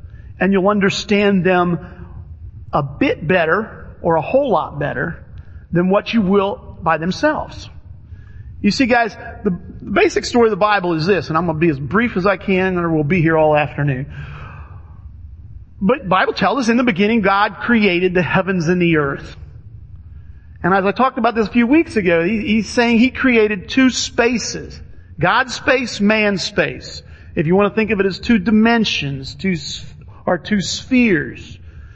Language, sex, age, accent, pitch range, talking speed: English, male, 40-59, American, 150-225 Hz, 175 wpm